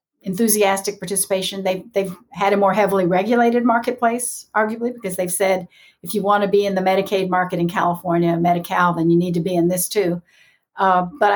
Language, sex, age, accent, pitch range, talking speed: English, female, 60-79, American, 180-215 Hz, 185 wpm